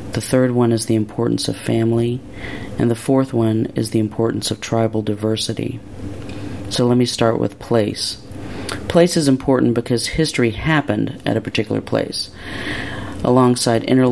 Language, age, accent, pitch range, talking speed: English, 40-59, American, 110-130 Hz, 150 wpm